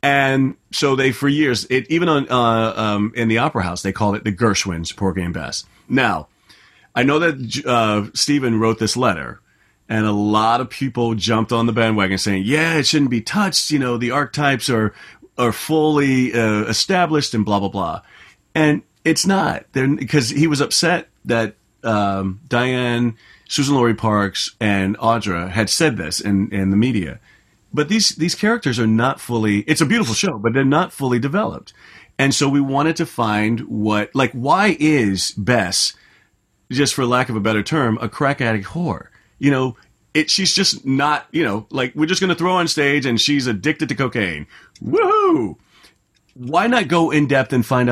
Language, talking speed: English, 185 wpm